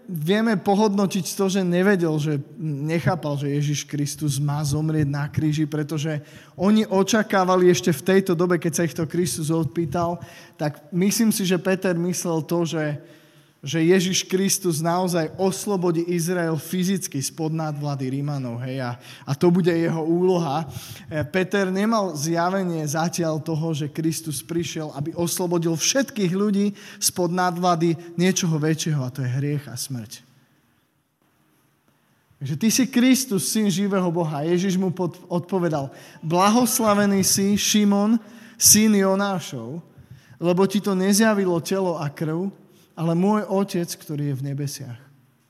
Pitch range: 150-185 Hz